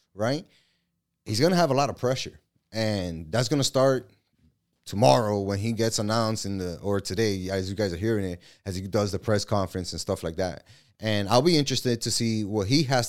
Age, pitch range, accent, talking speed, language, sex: 20-39, 100-120 Hz, American, 220 wpm, English, male